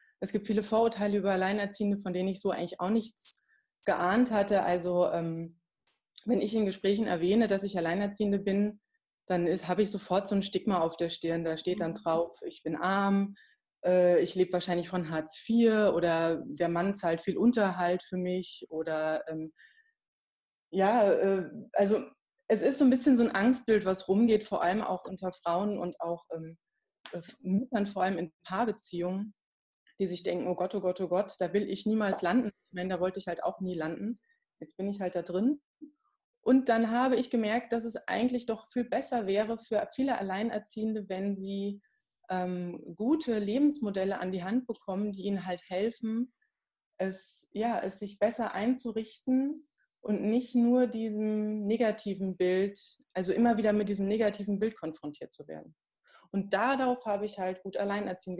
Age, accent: 20-39, German